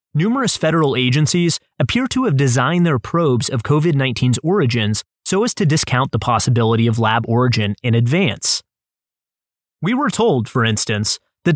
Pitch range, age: 120-165 Hz, 30-49